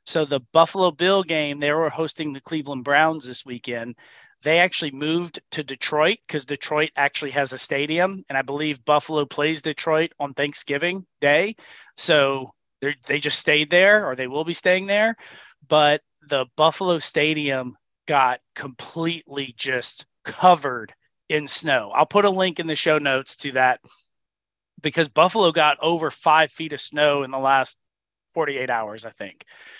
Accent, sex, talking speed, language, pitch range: American, male, 160 wpm, English, 145-180 Hz